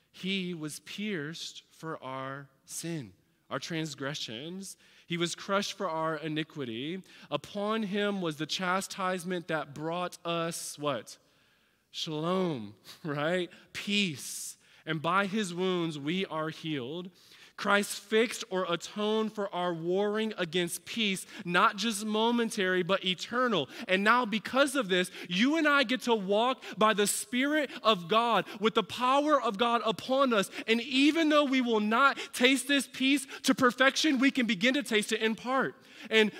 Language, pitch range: English, 160-235 Hz